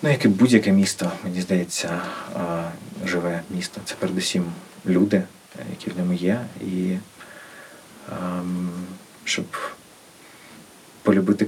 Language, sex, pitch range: Ukrainian, male, 90-110 Hz